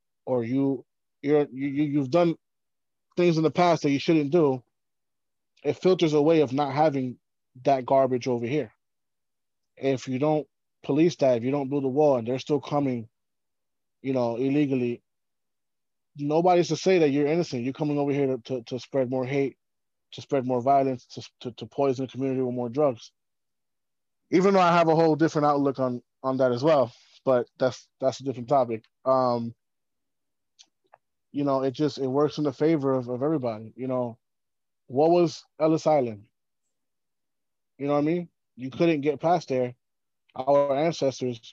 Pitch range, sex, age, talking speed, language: 125-150 Hz, male, 20-39, 175 wpm, English